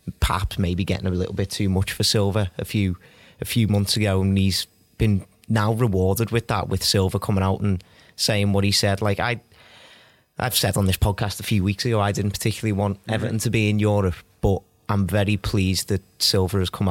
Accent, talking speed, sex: British, 215 wpm, male